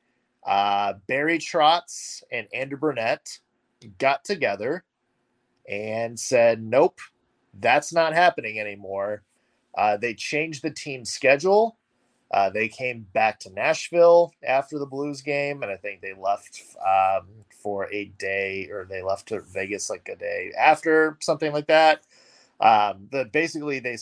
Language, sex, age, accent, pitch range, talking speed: English, male, 30-49, American, 105-150 Hz, 140 wpm